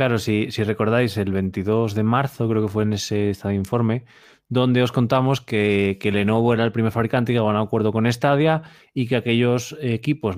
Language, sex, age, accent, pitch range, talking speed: Spanish, male, 20-39, Spanish, 100-125 Hz, 210 wpm